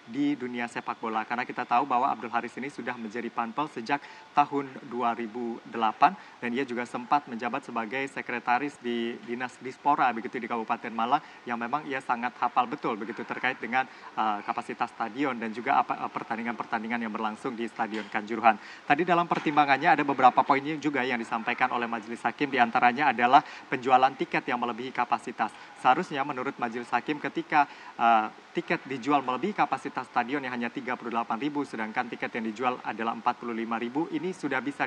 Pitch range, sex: 120-145 Hz, male